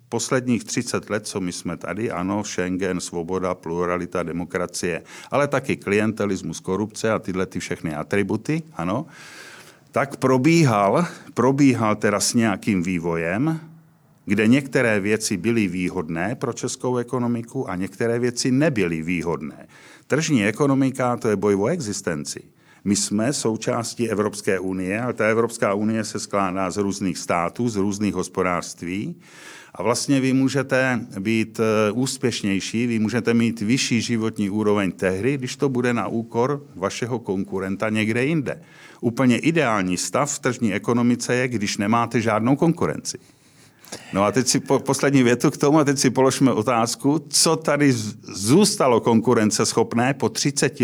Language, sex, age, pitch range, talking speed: Czech, male, 50-69, 100-130 Hz, 140 wpm